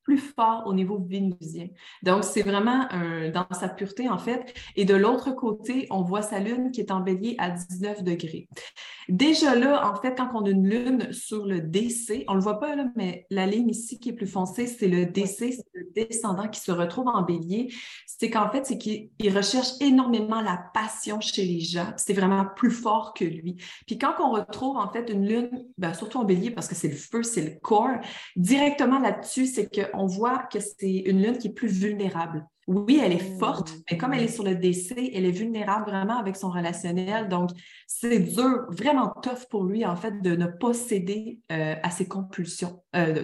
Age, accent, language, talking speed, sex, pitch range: 30-49, Canadian, French, 215 wpm, female, 185-235 Hz